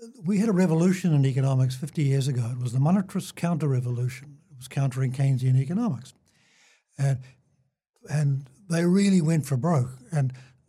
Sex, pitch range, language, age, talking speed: male, 130-180 Hz, English, 60-79, 150 wpm